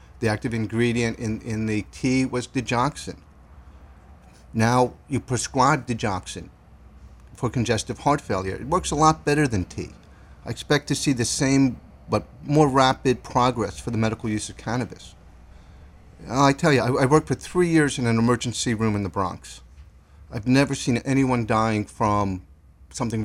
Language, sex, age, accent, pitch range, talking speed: English, male, 50-69, American, 90-135 Hz, 165 wpm